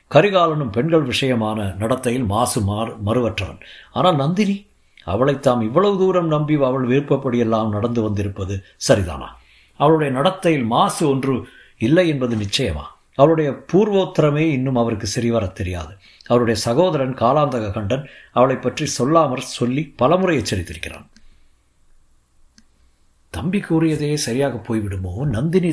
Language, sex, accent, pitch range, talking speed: Tamil, male, native, 110-155 Hz, 110 wpm